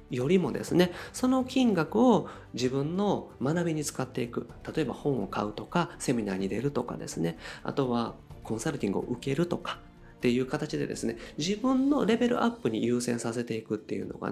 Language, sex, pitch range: Japanese, male, 130-205 Hz